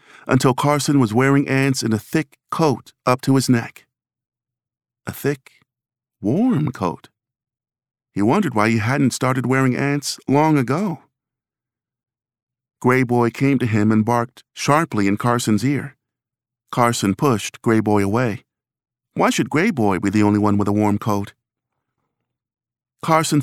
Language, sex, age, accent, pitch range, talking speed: English, male, 50-69, American, 110-135 Hz, 145 wpm